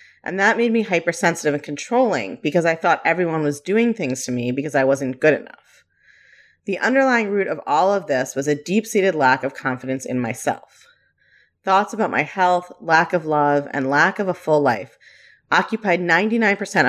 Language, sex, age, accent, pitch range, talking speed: English, female, 30-49, American, 145-205 Hz, 180 wpm